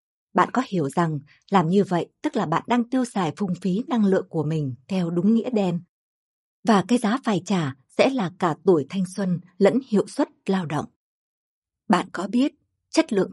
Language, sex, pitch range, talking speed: Vietnamese, female, 175-235 Hz, 200 wpm